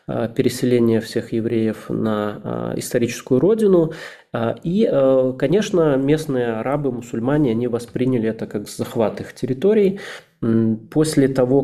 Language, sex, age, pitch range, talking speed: Russian, male, 20-39, 115-135 Hz, 105 wpm